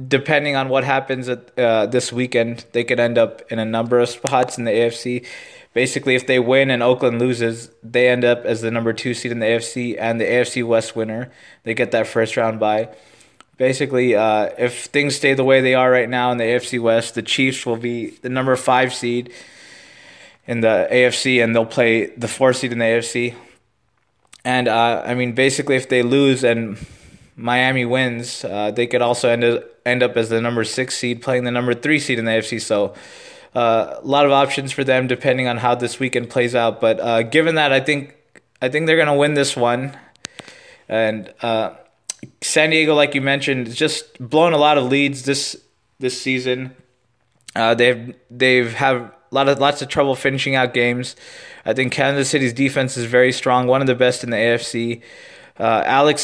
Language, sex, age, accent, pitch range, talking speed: English, male, 20-39, American, 115-135 Hz, 200 wpm